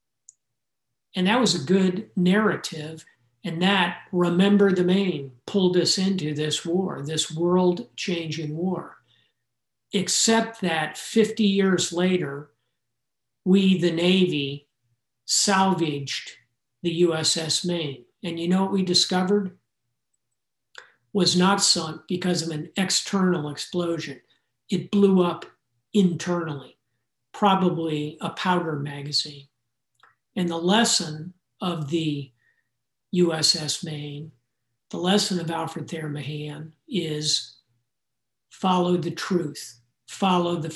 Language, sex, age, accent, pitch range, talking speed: English, male, 50-69, American, 150-185 Hz, 105 wpm